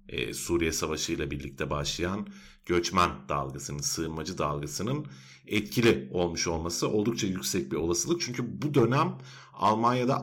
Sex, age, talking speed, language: male, 50-69, 115 wpm, Turkish